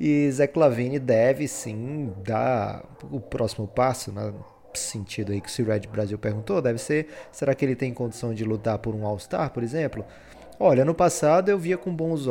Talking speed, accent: 195 wpm, Brazilian